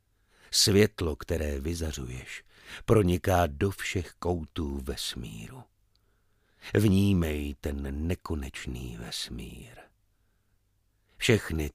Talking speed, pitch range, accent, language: 65 wpm, 80-100 Hz, native, Czech